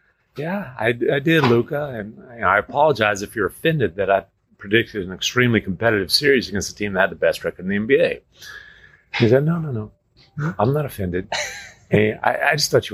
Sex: male